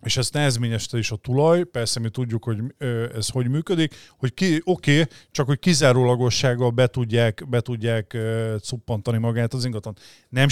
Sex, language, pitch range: male, Hungarian, 115-135 Hz